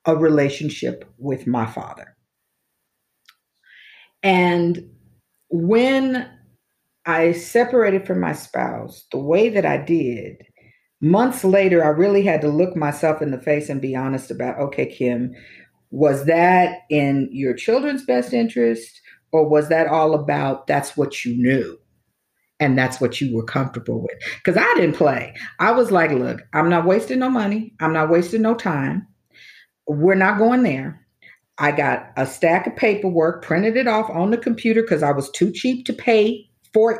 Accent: American